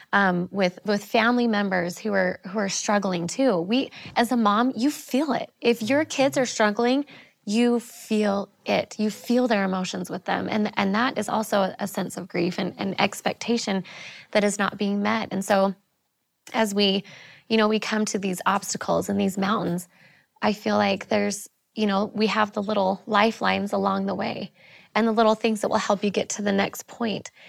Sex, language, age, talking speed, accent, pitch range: female, English, 20-39, 195 wpm, American, 195-235 Hz